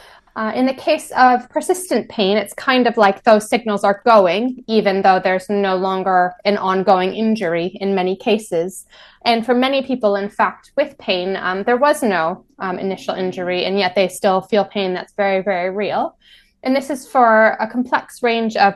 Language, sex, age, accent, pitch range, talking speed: English, female, 20-39, American, 195-245 Hz, 190 wpm